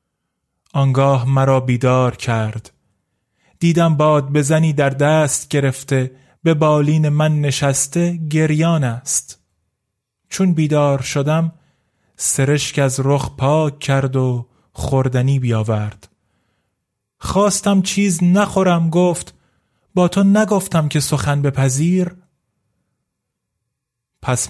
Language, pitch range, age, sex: Persian, 130-160 Hz, 30-49, male